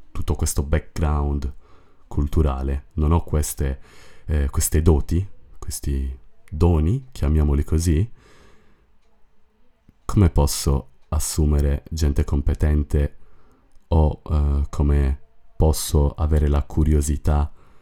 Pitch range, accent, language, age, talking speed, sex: 70-85 Hz, native, Italian, 30-49, 90 wpm, male